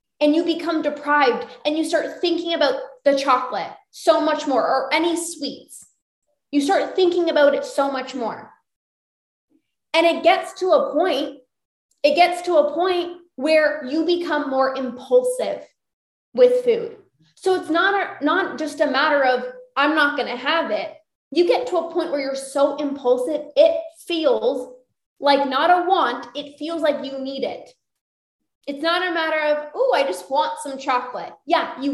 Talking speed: 170 wpm